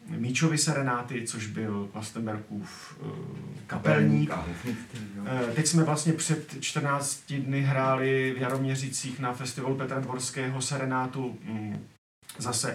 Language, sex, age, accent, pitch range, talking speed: Czech, male, 40-59, native, 120-140 Hz, 95 wpm